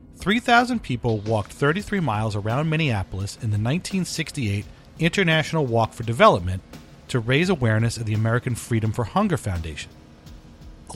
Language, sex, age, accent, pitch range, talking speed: English, male, 40-59, American, 95-145 Hz, 135 wpm